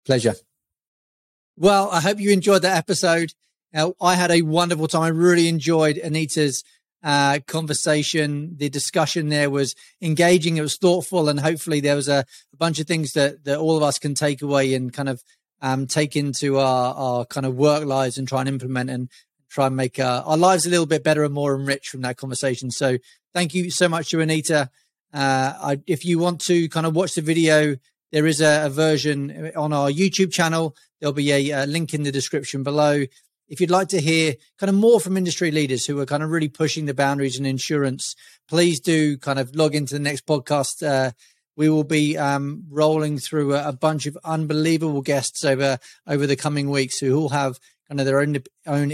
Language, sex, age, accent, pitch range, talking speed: English, male, 30-49, British, 135-160 Hz, 205 wpm